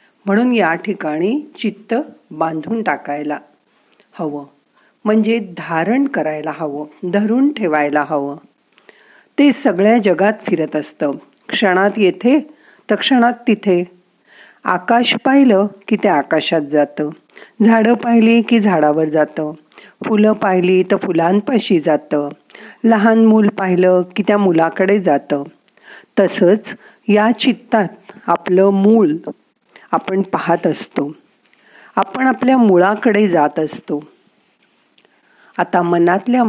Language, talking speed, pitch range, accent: Marathi, 100 wpm, 170-230 Hz, native